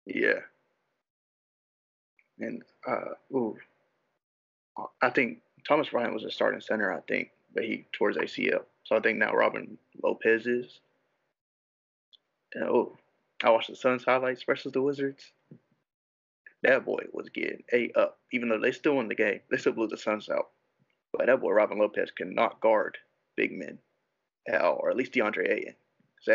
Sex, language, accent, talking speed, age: male, English, American, 160 wpm, 20-39